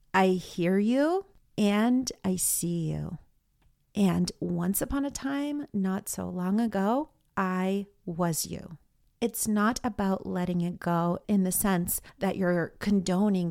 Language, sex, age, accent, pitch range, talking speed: English, female, 40-59, American, 185-255 Hz, 140 wpm